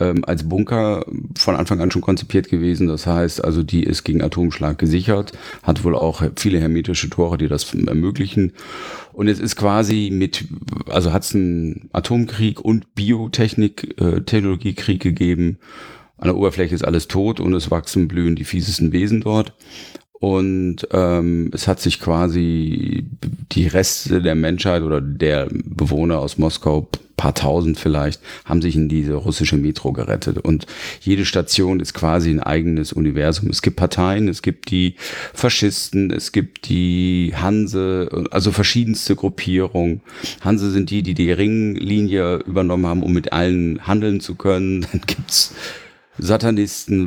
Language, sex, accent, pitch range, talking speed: German, male, German, 85-105 Hz, 150 wpm